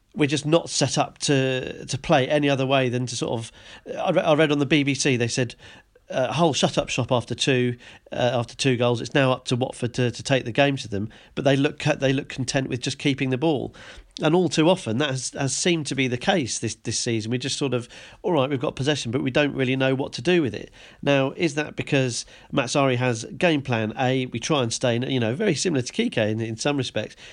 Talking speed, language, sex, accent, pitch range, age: 250 wpm, English, male, British, 125-150 Hz, 40-59